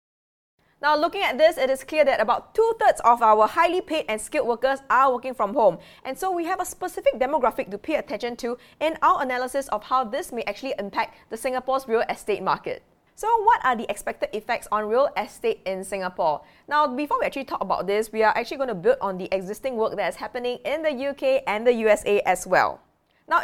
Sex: female